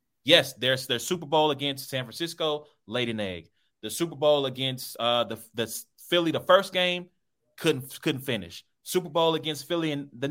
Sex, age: male, 30-49